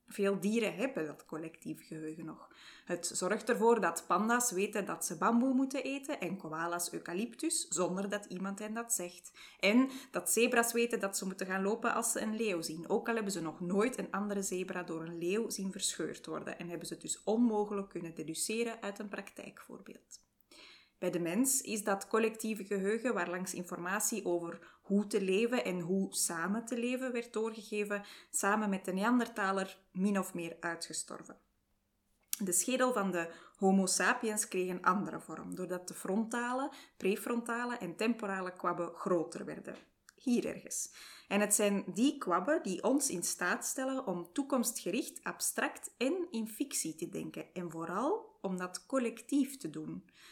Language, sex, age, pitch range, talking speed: Dutch, female, 20-39, 180-235 Hz, 170 wpm